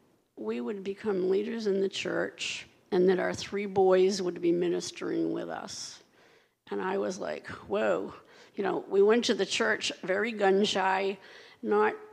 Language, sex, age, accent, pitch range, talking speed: English, female, 60-79, American, 190-245 Hz, 165 wpm